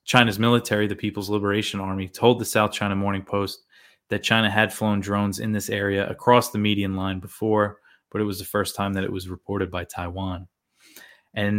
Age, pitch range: 20-39, 95-110 Hz